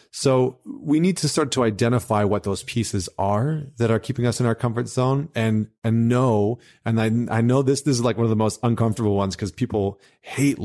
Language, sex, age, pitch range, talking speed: English, male, 30-49, 100-120 Hz, 220 wpm